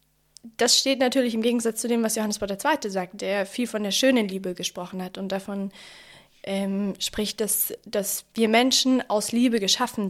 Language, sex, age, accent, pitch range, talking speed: German, female, 20-39, German, 195-235 Hz, 185 wpm